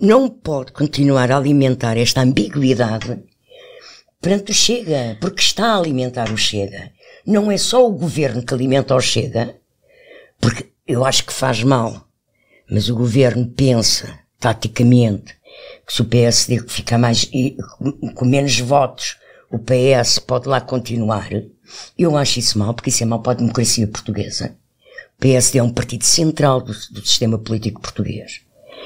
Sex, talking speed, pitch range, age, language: female, 150 wpm, 115-145 Hz, 50-69, Portuguese